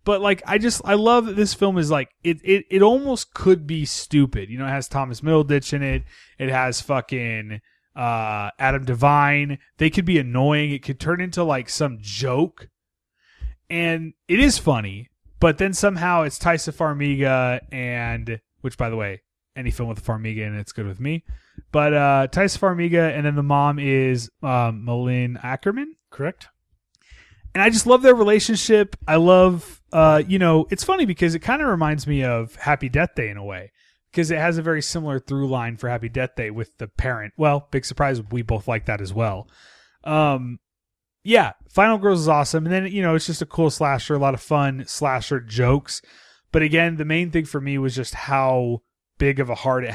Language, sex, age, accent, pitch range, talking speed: English, male, 20-39, American, 120-165 Hz, 205 wpm